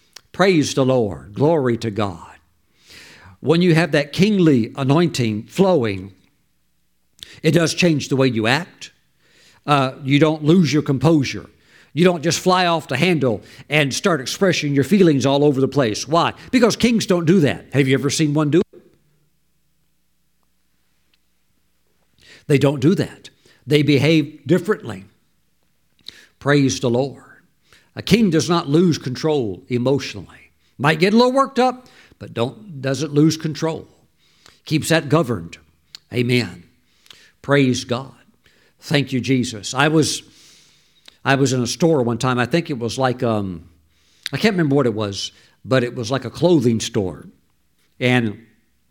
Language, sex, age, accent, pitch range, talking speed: English, male, 60-79, American, 115-160 Hz, 150 wpm